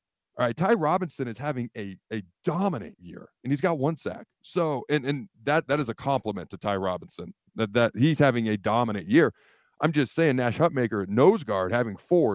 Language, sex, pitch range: English, male, 105-145 Hz